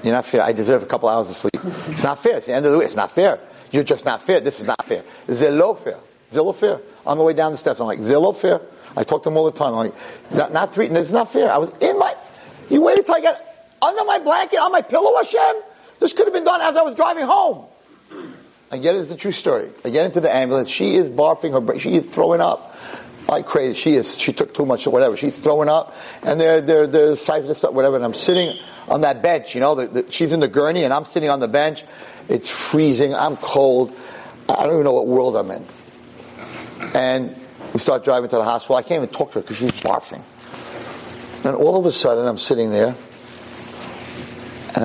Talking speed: 245 wpm